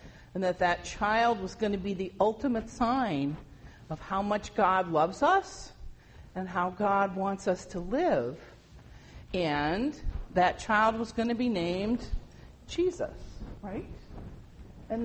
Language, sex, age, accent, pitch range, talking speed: English, female, 50-69, American, 155-230 Hz, 140 wpm